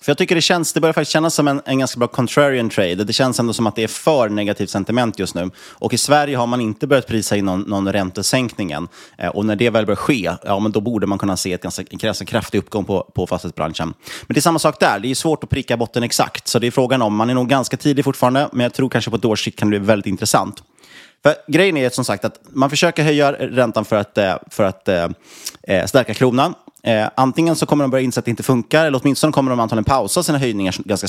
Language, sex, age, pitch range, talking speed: Swedish, male, 30-49, 100-130 Hz, 250 wpm